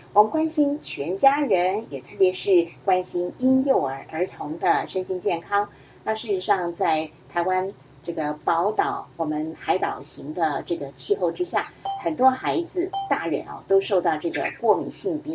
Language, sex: Chinese, female